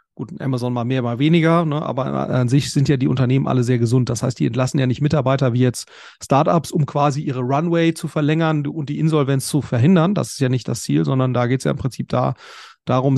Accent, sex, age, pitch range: German, male, 40-59, 130-160 Hz